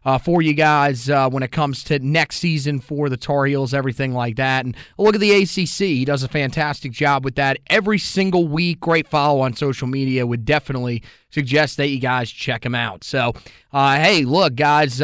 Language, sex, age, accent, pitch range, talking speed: English, male, 30-49, American, 140-180 Hz, 210 wpm